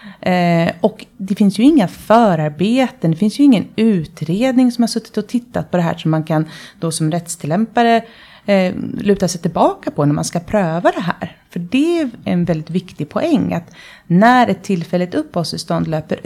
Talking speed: 175 wpm